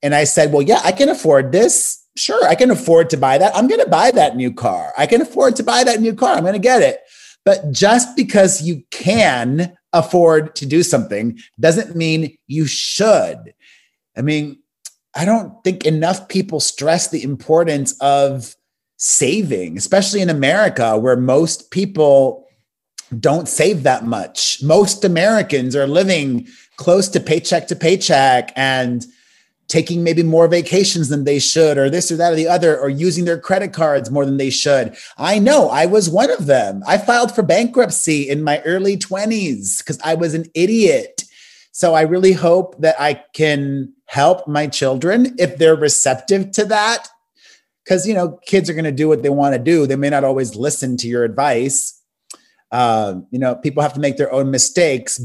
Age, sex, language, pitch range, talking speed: 30-49, male, English, 140-190 Hz, 185 wpm